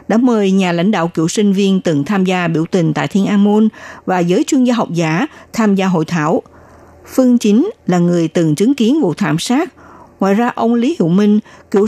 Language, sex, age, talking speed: Vietnamese, female, 60-79, 220 wpm